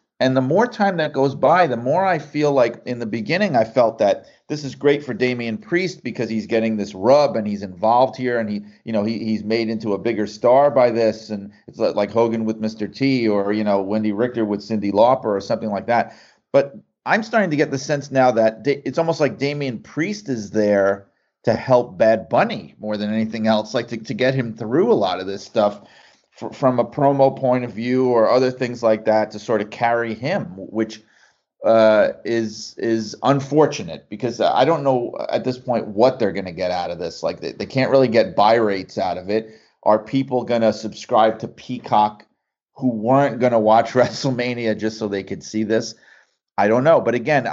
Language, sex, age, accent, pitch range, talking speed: English, male, 40-59, American, 110-130 Hz, 215 wpm